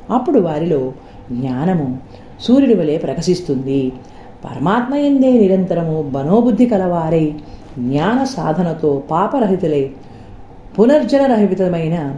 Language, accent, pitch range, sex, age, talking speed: Telugu, native, 140-225 Hz, female, 40-59, 75 wpm